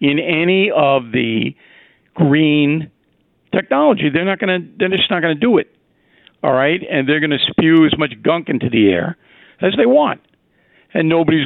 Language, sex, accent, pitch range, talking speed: English, male, American, 145-190 Hz, 150 wpm